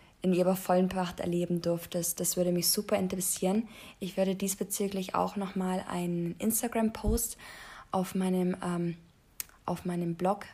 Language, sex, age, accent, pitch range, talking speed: German, female, 20-39, German, 180-205 Hz, 125 wpm